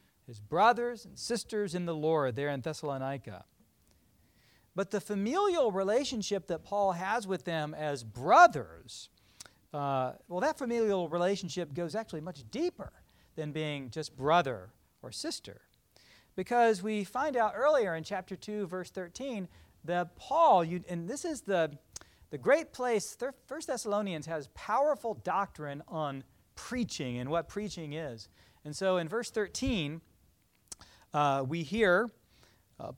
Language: English